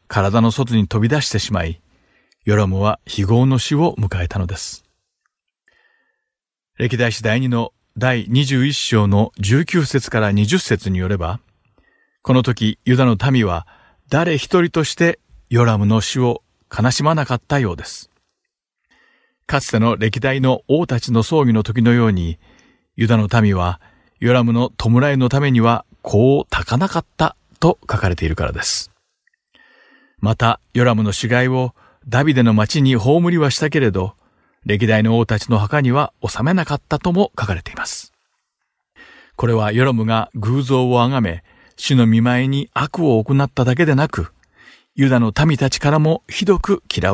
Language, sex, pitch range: Japanese, male, 110-140 Hz